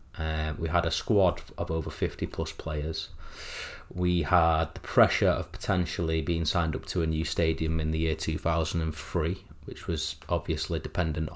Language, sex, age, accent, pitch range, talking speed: English, male, 30-49, British, 80-100 Hz, 165 wpm